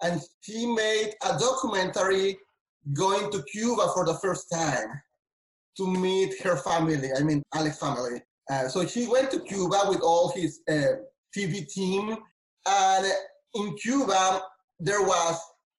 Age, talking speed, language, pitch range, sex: 30-49, 140 wpm, English, 160-195 Hz, male